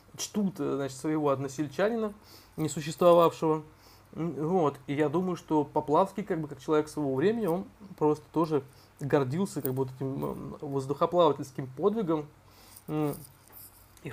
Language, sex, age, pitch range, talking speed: Russian, male, 20-39, 135-160 Hz, 120 wpm